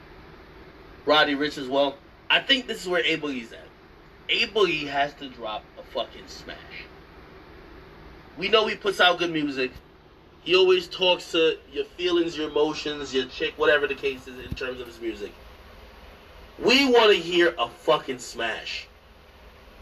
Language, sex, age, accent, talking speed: English, male, 30-49, American, 155 wpm